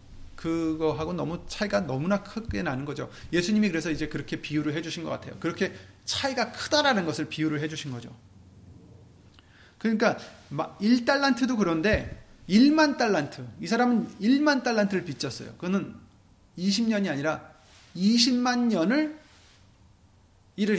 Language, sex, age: Korean, male, 30-49